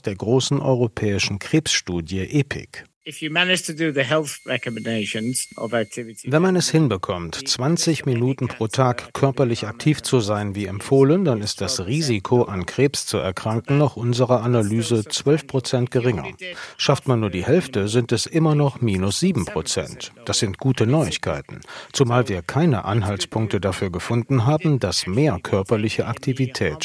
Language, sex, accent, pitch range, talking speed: German, male, German, 105-135 Hz, 130 wpm